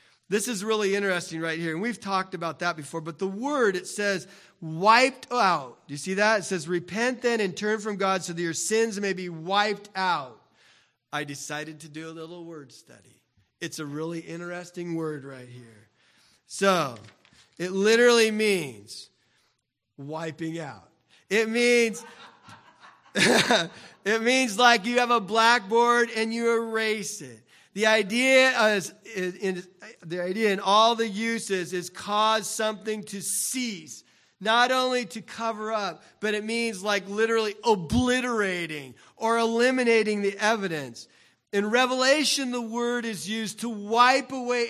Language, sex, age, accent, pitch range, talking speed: English, male, 40-59, American, 175-230 Hz, 145 wpm